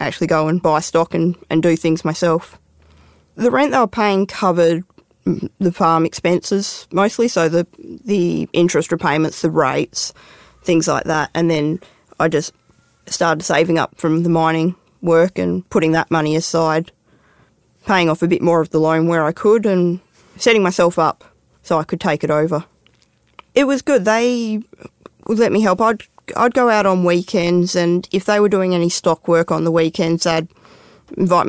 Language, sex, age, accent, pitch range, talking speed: English, female, 20-39, Australian, 160-185 Hz, 180 wpm